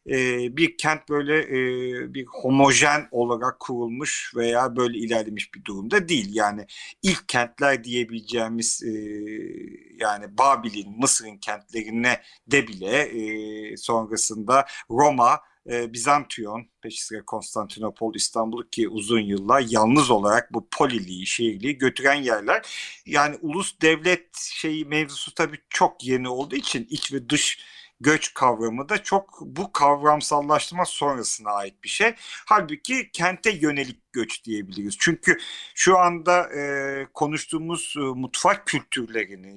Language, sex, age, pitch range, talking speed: Turkish, male, 50-69, 115-155 Hz, 120 wpm